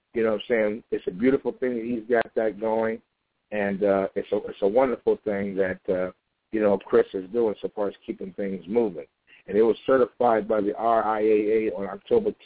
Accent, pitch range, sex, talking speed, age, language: American, 105-130 Hz, male, 215 wpm, 60-79, English